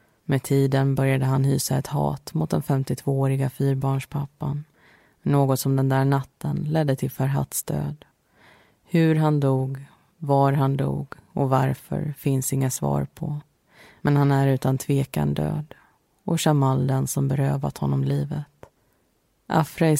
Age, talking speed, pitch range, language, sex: 30-49, 140 wpm, 130-145 Hz, Swedish, female